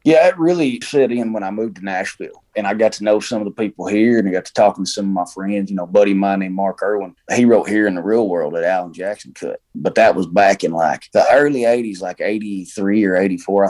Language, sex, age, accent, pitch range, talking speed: English, male, 20-39, American, 95-110 Hz, 270 wpm